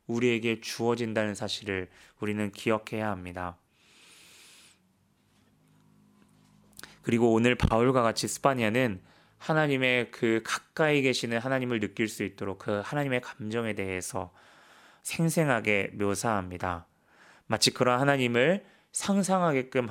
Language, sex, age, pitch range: Korean, male, 20-39, 105-135 Hz